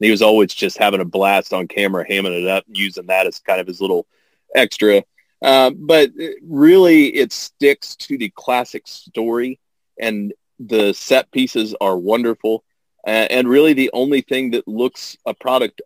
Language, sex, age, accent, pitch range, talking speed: English, male, 30-49, American, 105-140 Hz, 170 wpm